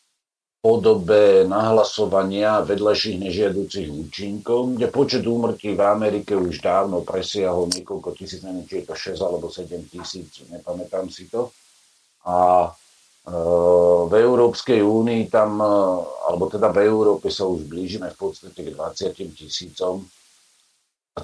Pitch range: 90-105 Hz